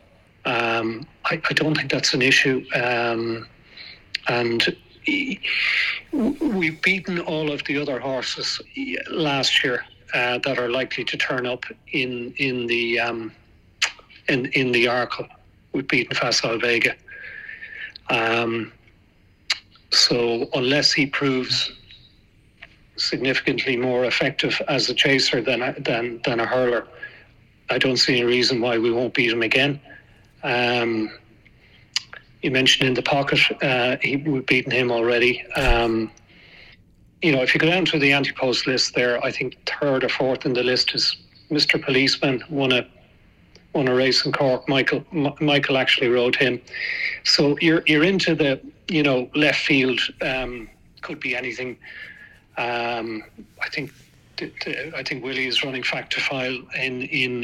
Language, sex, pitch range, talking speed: English, male, 120-145 Hz, 150 wpm